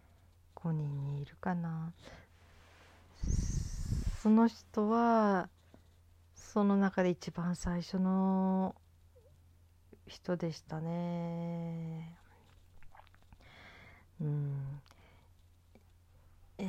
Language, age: Japanese, 40-59